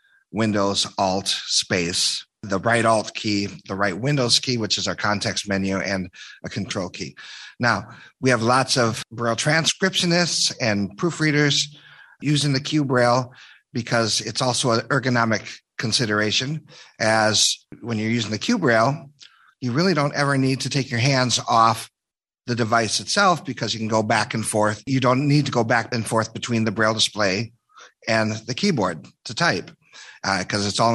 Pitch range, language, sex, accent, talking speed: 105-130 Hz, English, male, American, 170 wpm